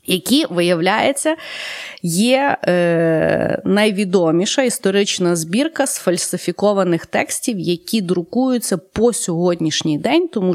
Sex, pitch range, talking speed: female, 170-240 Hz, 85 wpm